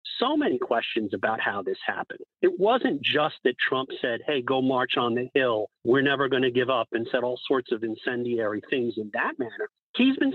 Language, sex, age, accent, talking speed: English, male, 50-69, American, 210 wpm